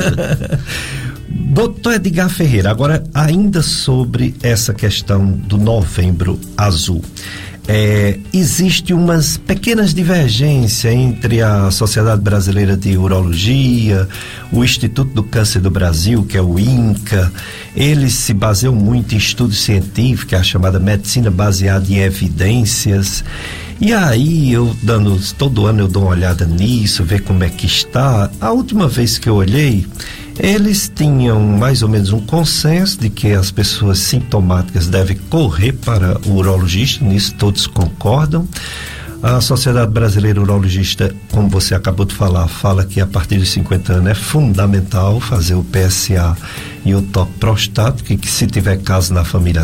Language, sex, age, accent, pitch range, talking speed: Portuguese, male, 50-69, Brazilian, 95-125 Hz, 140 wpm